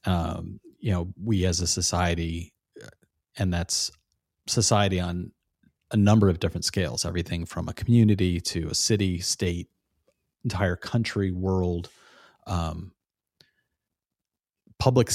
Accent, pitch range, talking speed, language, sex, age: American, 95-110 Hz, 115 wpm, English, male, 30-49